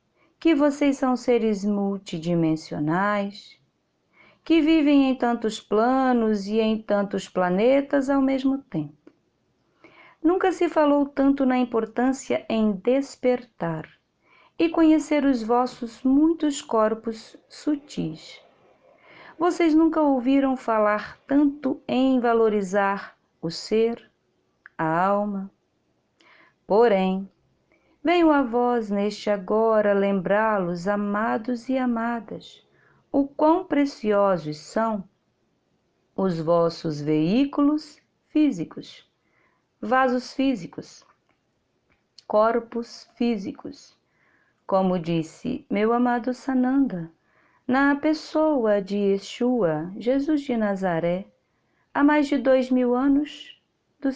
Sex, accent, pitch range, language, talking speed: female, Brazilian, 205-275 Hz, Portuguese, 95 wpm